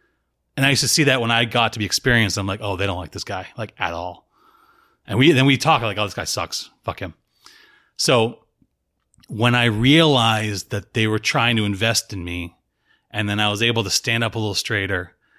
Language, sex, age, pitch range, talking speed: English, male, 30-49, 105-140 Hz, 225 wpm